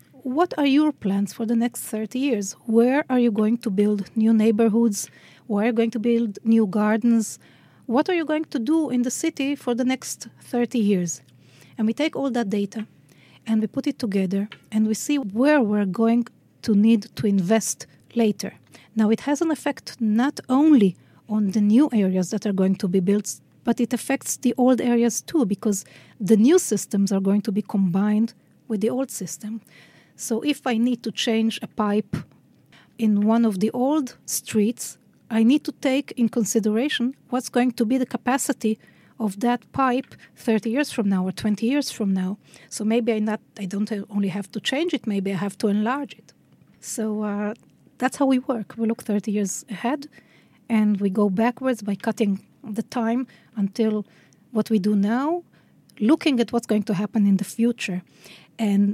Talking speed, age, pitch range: 190 wpm, 40-59, 210-250 Hz